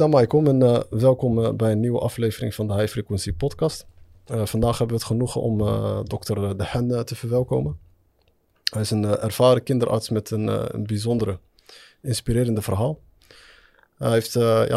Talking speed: 165 wpm